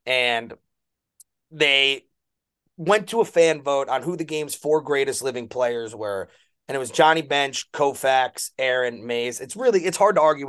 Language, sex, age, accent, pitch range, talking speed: English, male, 30-49, American, 130-170 Hz, 170 wpm